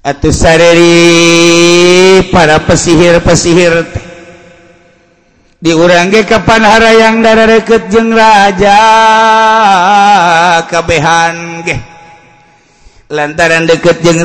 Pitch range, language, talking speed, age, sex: 165-170 Hz, Indonesian, 65 wpm, 50-69, male